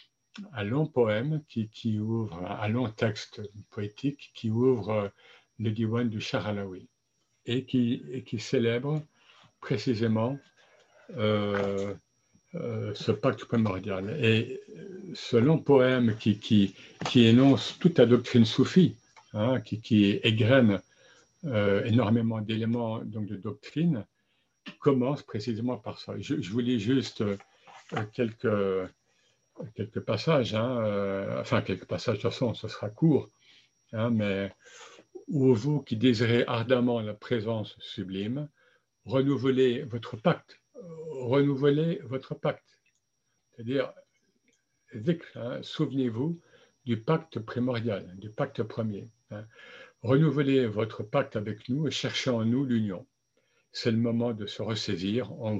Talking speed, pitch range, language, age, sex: 125 wpm, 110-135 Hz, French, 60-79, male